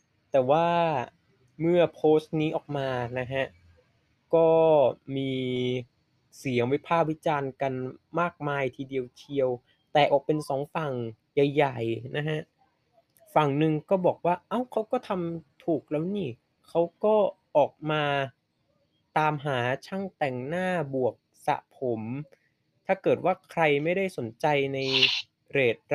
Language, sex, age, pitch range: Thai, male, 20-39, 135-165 Hz